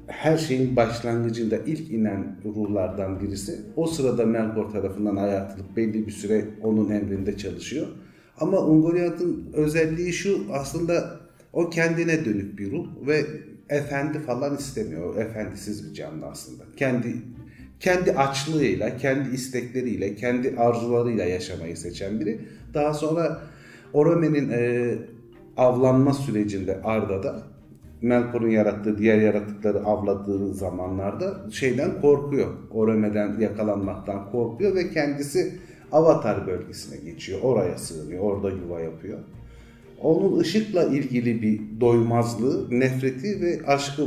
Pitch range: 105-145 Hz